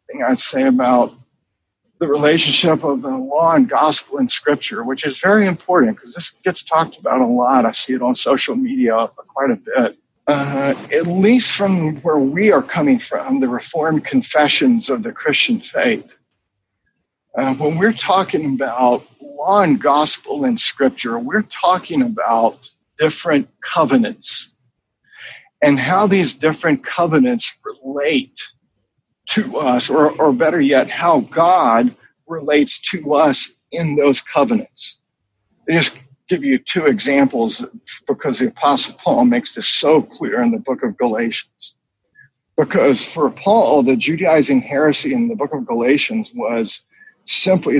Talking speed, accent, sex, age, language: 145 wpm, American, male, 50-69, English